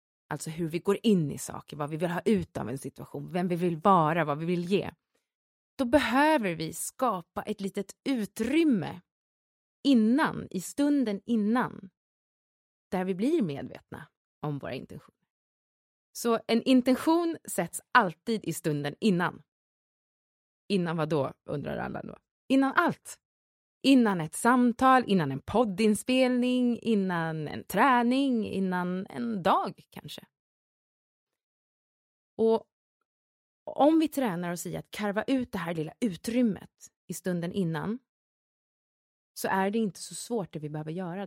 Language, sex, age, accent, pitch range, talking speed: English, female, 30-49, Swedish, 165-235 Hz, 135 wpm